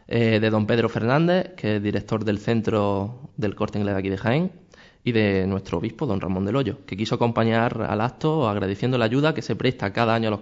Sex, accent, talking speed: male, Spanish, 230 wpm